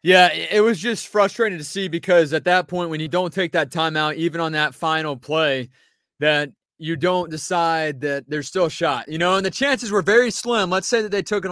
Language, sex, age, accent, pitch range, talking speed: English, male, 20-39, American, 160-185 Hz, 235 wpm